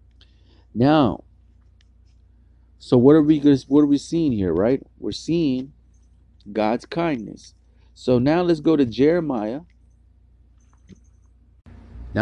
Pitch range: 95-150 Hz